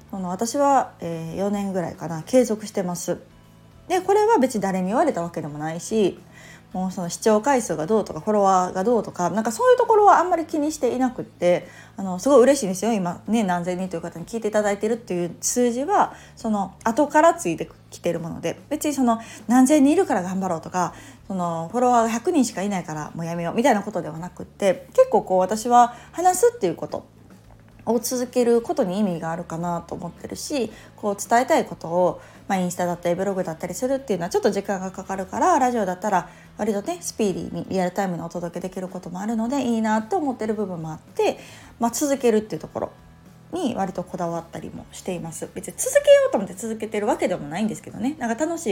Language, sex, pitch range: Japanese, female, 175-250 Hz